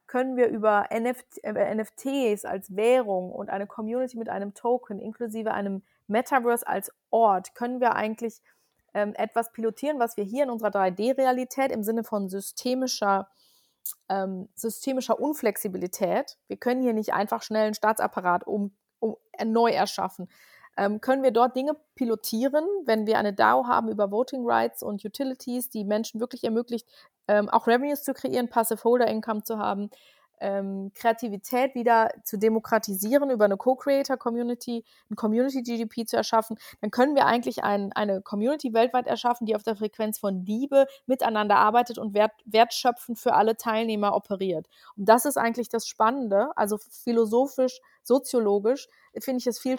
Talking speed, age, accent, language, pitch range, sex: 150 wpm, 30-49, German, German, 210-250 Hz, female